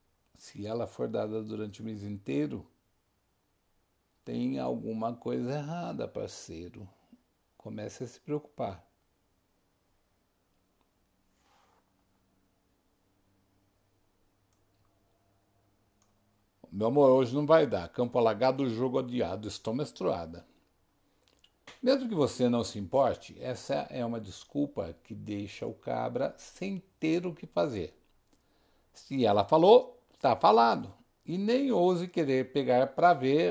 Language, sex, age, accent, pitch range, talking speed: Portuguese, male, 60-79, Brazilian, 95-145 Hz, 105 wpm